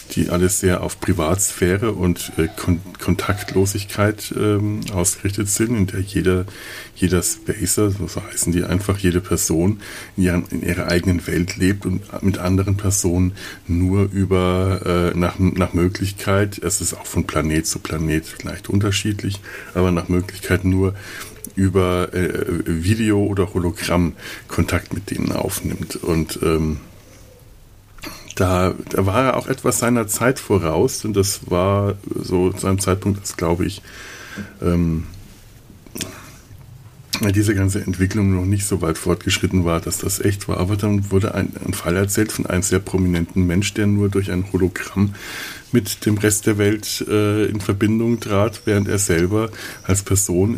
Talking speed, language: 150 wpm, German